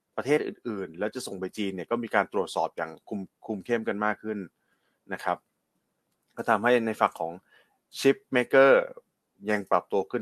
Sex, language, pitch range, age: male, Thai, 100-125 Hz, 20-39